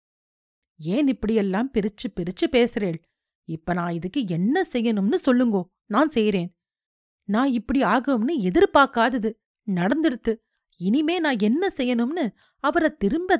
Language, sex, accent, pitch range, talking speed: Tamil, female, native, 200-285 Hz, 110 wpm